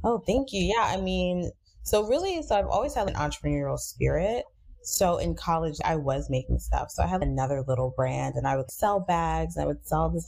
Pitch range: 135-165 Hz